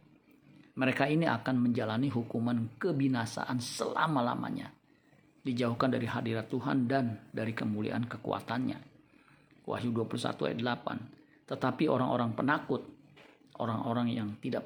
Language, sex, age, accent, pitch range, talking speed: Indonesian, male, 50-69, native, 115-140 Hz, 100 wpm